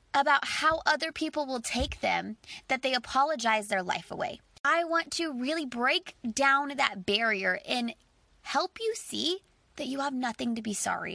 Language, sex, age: English, female, 20-39